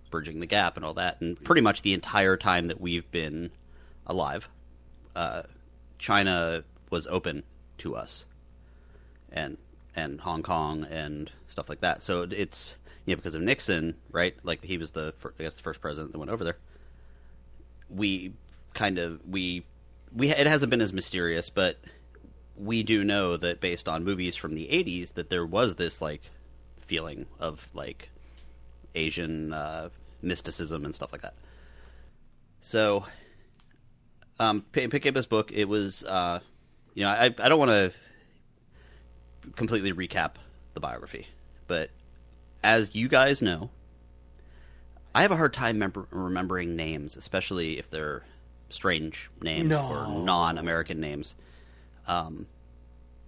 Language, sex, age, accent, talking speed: English, male, 30-49, American, 140 wpm